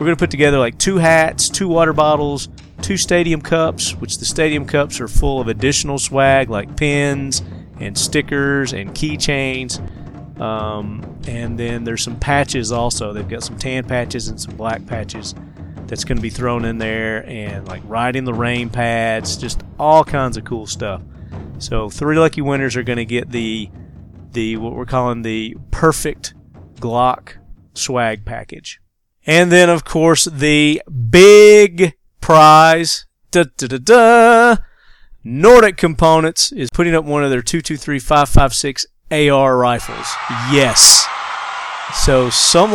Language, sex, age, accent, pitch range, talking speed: English, male, 30-49, American, 115-150 Hz, 145 wpm